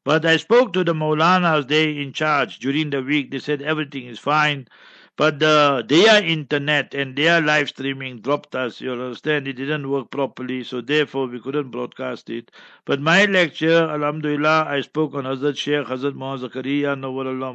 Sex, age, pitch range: male, 60-79, 135-155 Hz